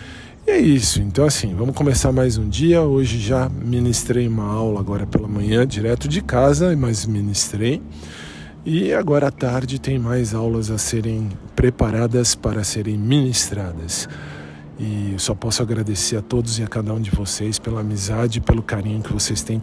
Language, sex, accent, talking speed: Portuguese, male, Brazilian, 175 wpm